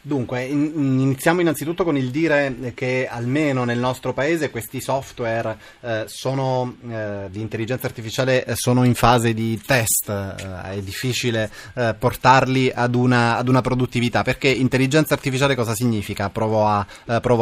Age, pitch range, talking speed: 20-39, 105-130 Hz, 130 wpm